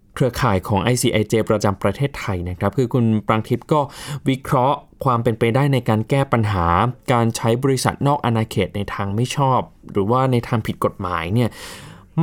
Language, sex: Thai, male